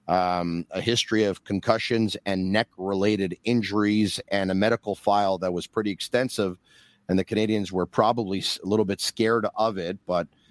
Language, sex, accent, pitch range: English, male, American, 90-110 Hz